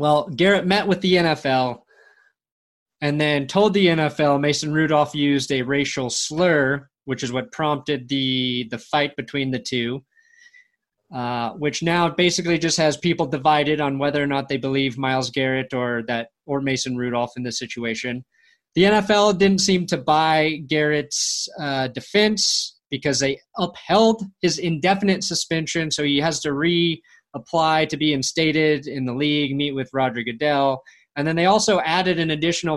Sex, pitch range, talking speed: male, 135-175 Hz, 165 wpm